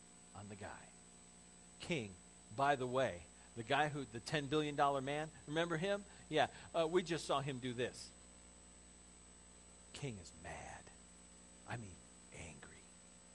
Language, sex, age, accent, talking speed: English, male, 40-59, American, 140 wpm